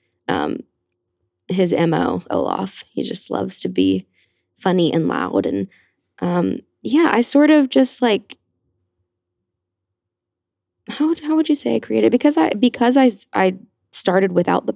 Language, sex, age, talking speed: English, female, 20-39, 140 wpm